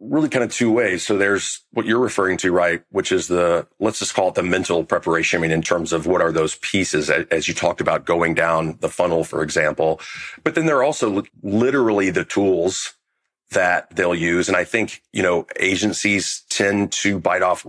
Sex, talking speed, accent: male, 210 wpm, American